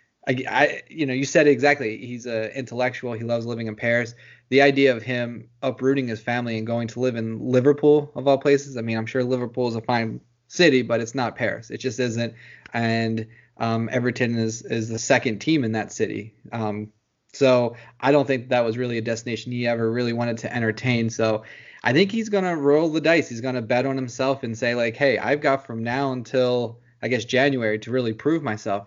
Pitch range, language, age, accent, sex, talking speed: 115-140 Hz, English, 20-39, American, male, 220 wpm